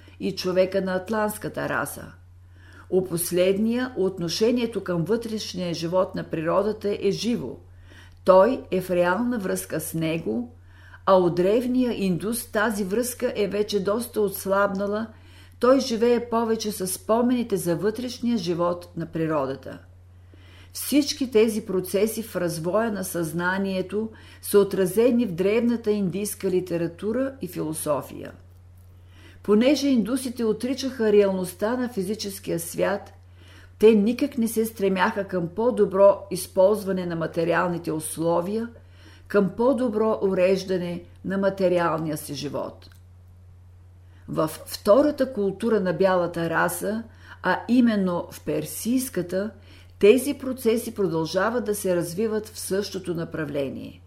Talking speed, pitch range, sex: 115 wpm, 160-220 Hz, female